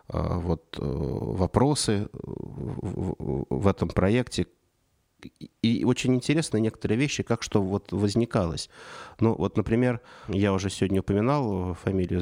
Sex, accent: male, native